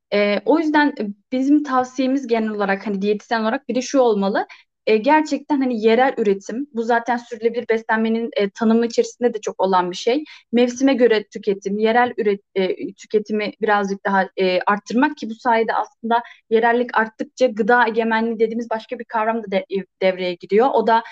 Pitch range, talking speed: 210-255 Hz, 170 wpm